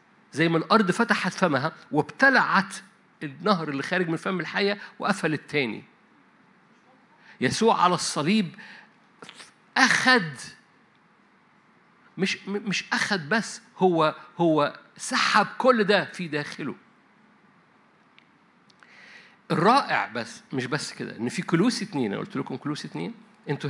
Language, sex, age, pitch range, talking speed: Arabic, male, 50-69, 165-215 Hz, 110 wpm